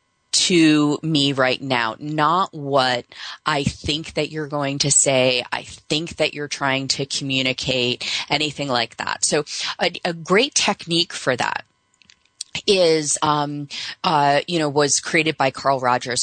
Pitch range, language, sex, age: 130-170 Hz, English, female, 20-39